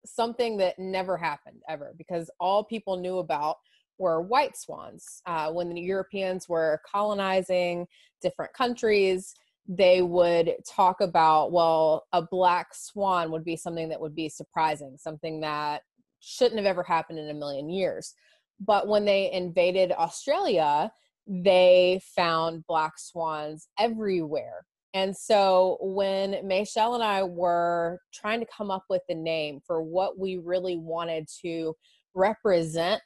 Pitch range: 170-195 Hz